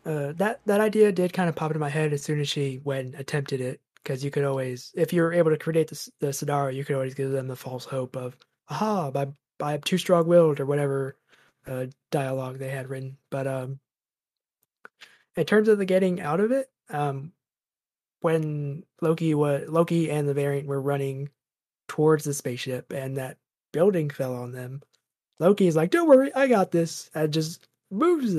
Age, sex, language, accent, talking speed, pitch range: 20-39, male, English, American, 195 wpm, 135-170 Hz